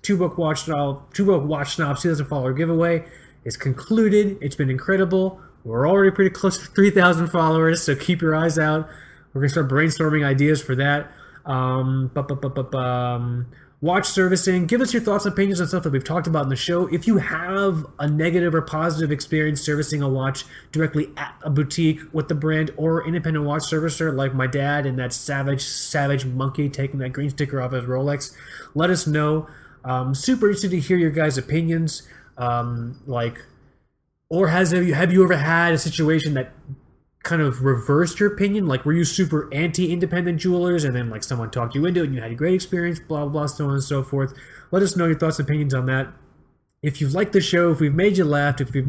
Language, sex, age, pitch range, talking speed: English, male, 20-39, 135-175 Hz, 205 wpm